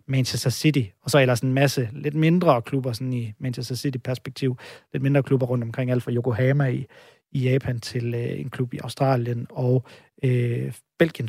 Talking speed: 185 wpm